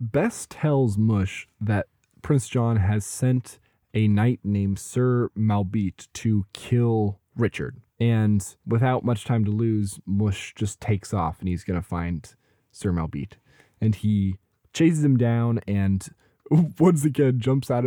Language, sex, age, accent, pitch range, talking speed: English, male, 20-39, American, 100-125 Hz, 145 wpm